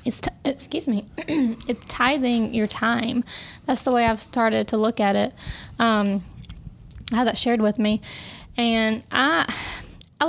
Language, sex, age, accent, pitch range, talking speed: English, female, 10-29, American, 220-250 Hz, 150 wpm